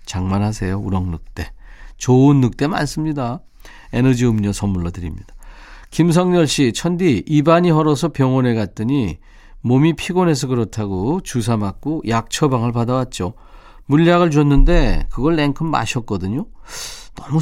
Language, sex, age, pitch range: Korean, male, 40-59, 105-150 Hz